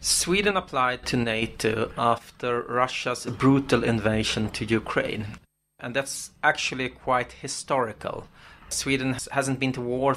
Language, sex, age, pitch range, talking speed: English, male, 30-49, 125-150 Hz, 120 wpm